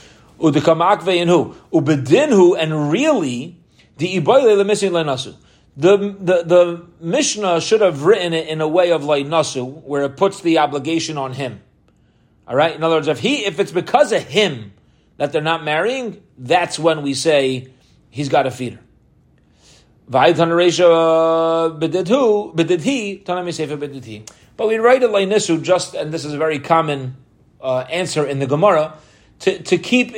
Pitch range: 140-175 Hz